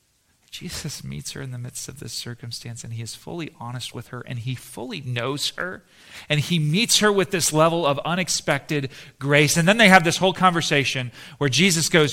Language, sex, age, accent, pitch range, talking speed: English, male, 40-59, American, 120-155 Hz, 205 wpm